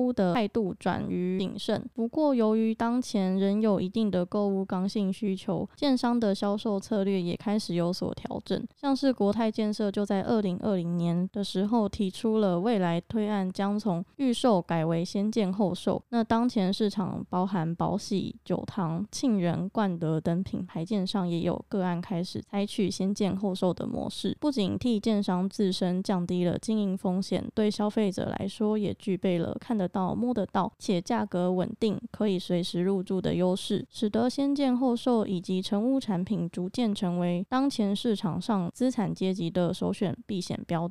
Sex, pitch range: female, 185-220 Hz